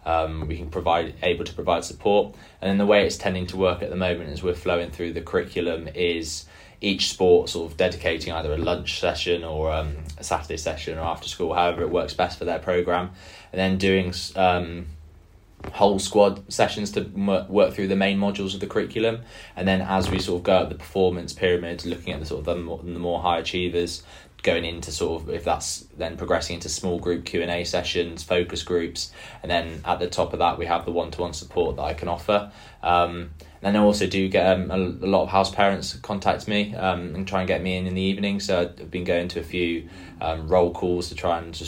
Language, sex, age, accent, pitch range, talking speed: English, male, 20-39, British, 85-95 Hz, 225 wpm